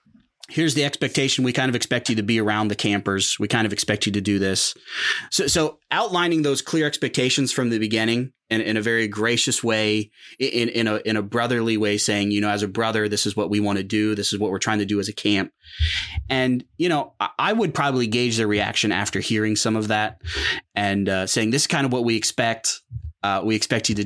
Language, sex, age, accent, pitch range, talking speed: English, male, 30-49, American, 105-130 Hz, 235 wpm